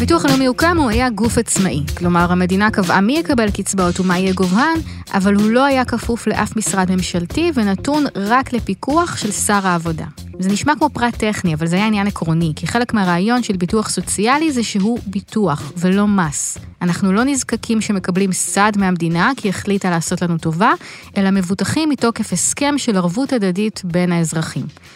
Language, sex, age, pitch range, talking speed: Hebrew, female, 20-39, 180-240 Hz, 170 wpm